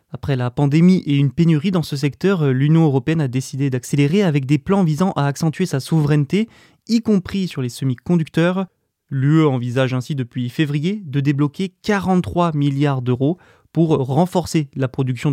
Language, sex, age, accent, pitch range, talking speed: French, male, 20-39, French, 135-175 Hz, 160 wpm